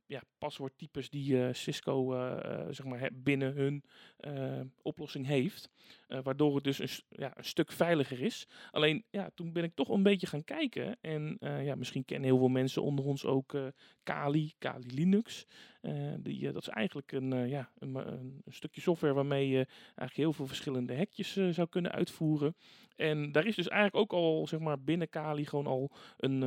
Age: 40-59